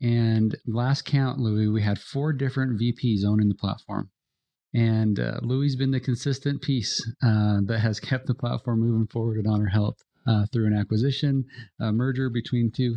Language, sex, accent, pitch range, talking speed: English, male, American, 105-125 Hz, 175 wpm